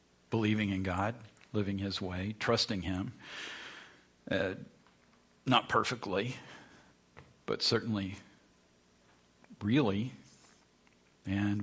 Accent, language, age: American, English, 50-69